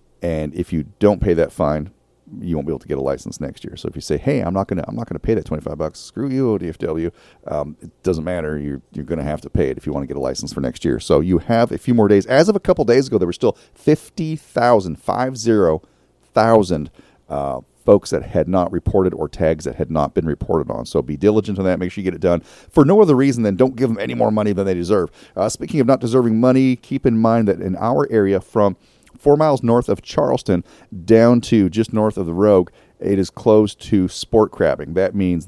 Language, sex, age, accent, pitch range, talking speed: English, male, 40-59, American, 85-115 Hz, 250 wpm